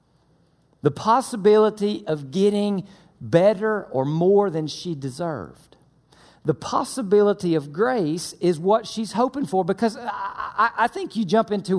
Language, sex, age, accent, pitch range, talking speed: English, male, 50-69, American, 170-225 Hz, 130 wpm